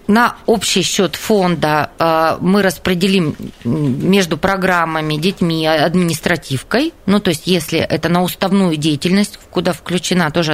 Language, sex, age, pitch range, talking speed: Russian, female, 20-39, 165-205 Hz, 120 wpm